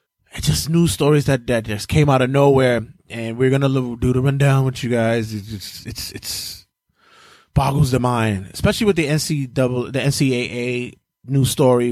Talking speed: 180 wpm